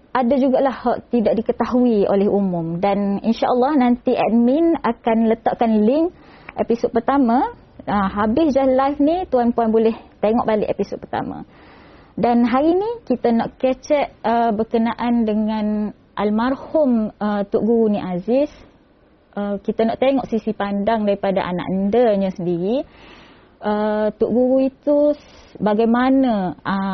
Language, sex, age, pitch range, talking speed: Indonesian, female, 20-39, 205-245 Hz, 125 wpm